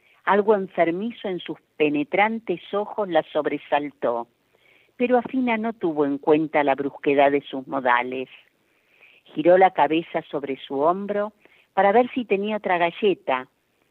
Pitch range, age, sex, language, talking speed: 150-195 Hz, 50-69, female, Spanish, 135 wpm